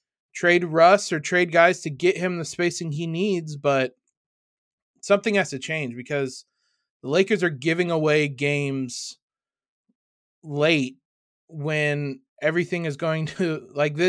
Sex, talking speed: male, 130 wpm